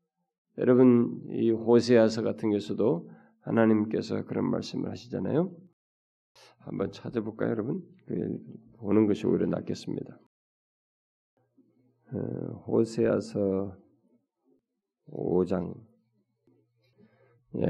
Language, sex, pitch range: Korean, male, 95-135 Hz